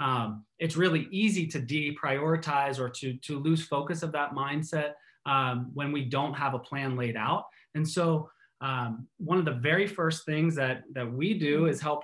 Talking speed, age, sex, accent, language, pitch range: 190 wpm, 20-39, male, American, English, 135-165 Hz